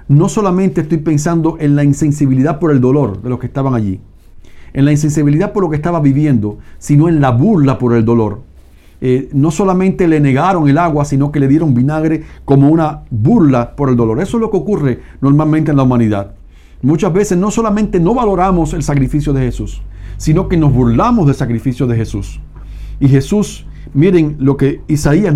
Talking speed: 190 wpm